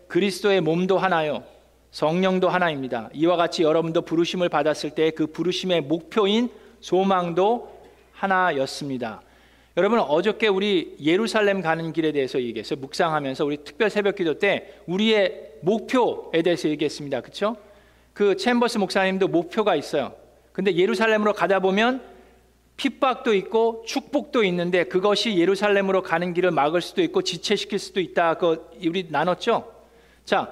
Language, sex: Korean, male